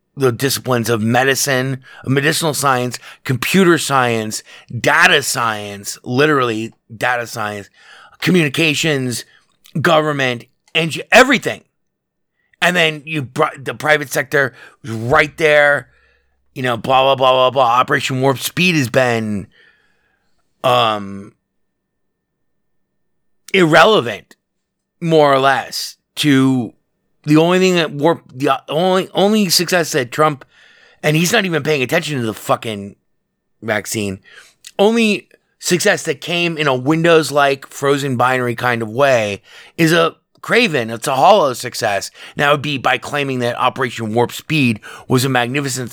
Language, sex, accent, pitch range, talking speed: English, male, American, 120-160 Hz, 130 wpm